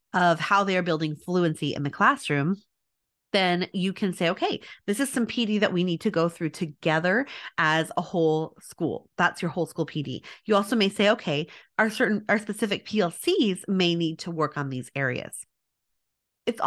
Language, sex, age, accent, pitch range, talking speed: English, female, 30-49, American, 165-215 Hz, 185 wpm